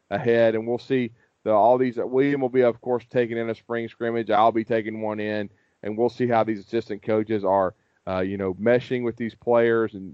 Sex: male